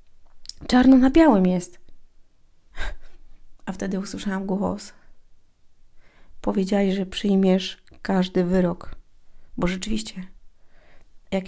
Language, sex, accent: Polish, female, native